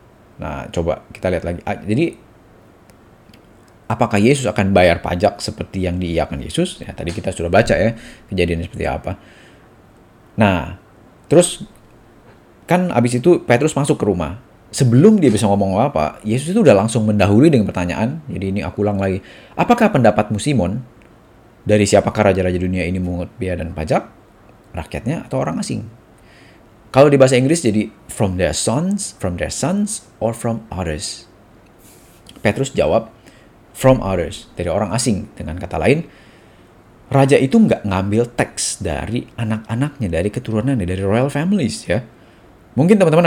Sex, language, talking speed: male, Indonesian, 145 wpm